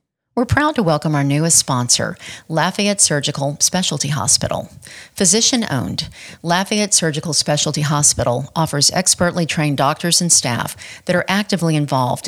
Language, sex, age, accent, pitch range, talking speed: English, female, 50-69, American, 145-175 Hz, 125 wpm